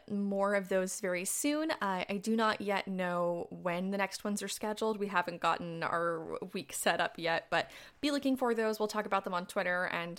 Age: 20-39